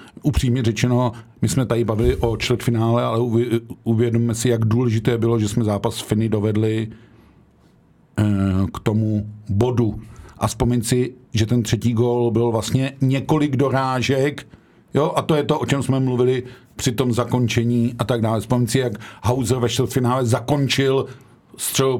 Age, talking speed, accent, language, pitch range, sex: 50-69, 155 wpm, native, Czech, 110-130 Hz, male